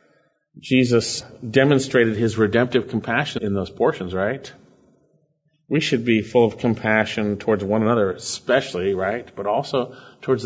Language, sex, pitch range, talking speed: English, male, 115-170 Hz, 130 wpm